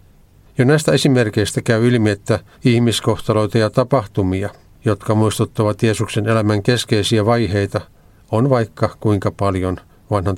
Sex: male